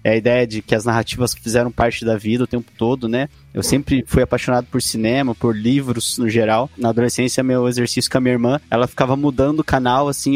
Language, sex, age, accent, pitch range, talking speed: Portuguese, male, 20-39, Brazilian, 120-145 Hz, 225 wpm